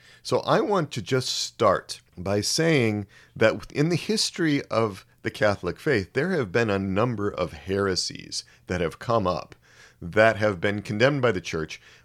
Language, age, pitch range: English, 40-59, 90-120 Hz